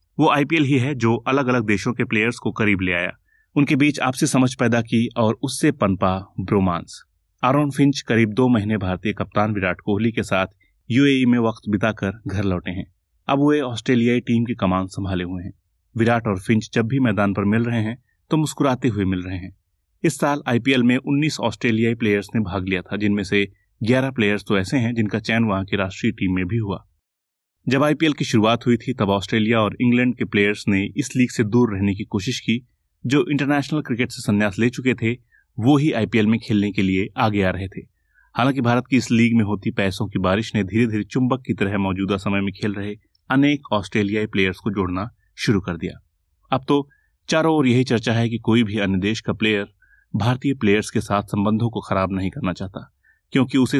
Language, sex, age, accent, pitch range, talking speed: Hindi, male, 30-49, native, 100-125 Hz, 210 wpm